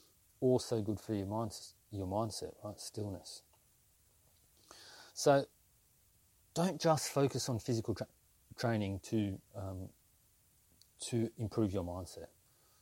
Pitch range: 95-125 Hz